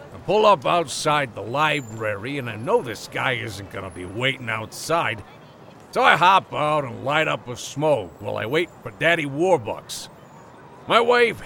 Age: 50-69